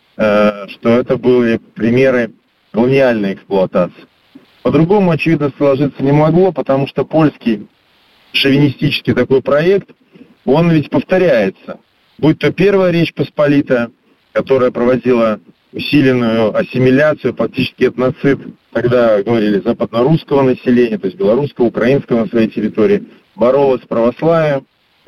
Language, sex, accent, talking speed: Russian, male, native, 110 wpm